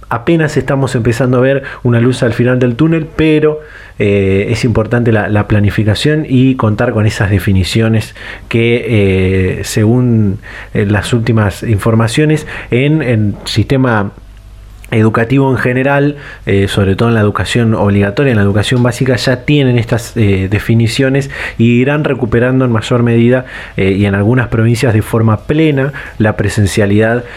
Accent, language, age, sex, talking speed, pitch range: Argentinian, Spanish, 20-39, male, 150 wpm, 110-140 Hz